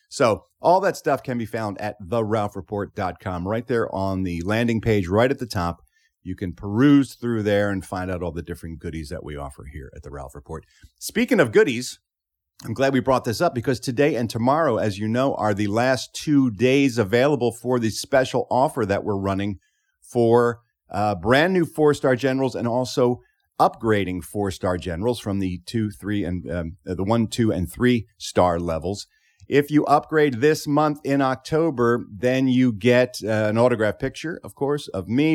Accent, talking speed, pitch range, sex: American, 190 wpm, 100-130 Hz, male